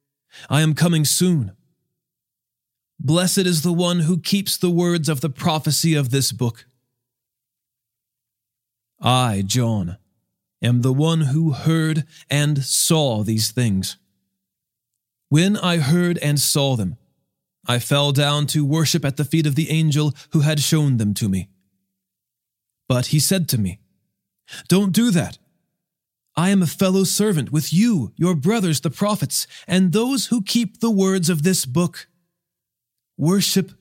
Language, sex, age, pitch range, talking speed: English, male, 30-49, 120-170 Hz, 145 wpm